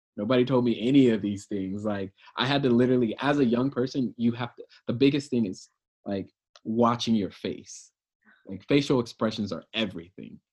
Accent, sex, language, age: American, male, English, 20-39